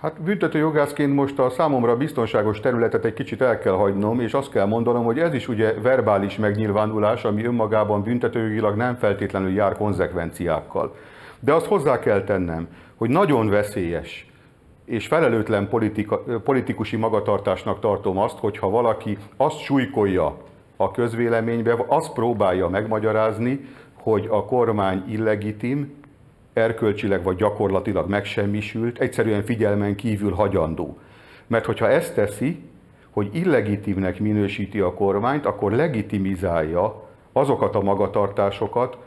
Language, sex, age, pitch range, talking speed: Hungarian, male, 50-69, 100-125 Hz, 120 wpm